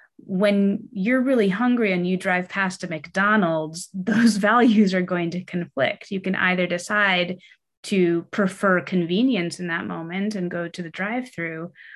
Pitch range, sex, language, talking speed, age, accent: 170-210 Hz, female, English, 155 wpm, 30-49, American